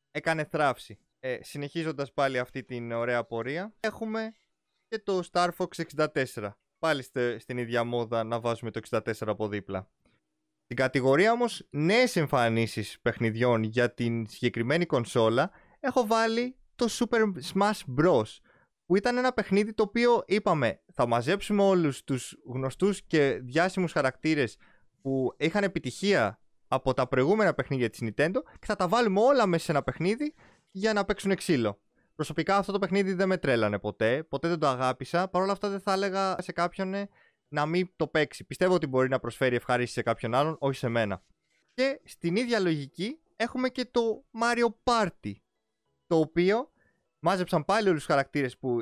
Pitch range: 125-200 Hz